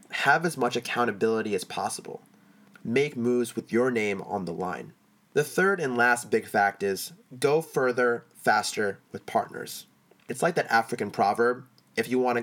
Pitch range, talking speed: 110-130 Hz, 170 wpm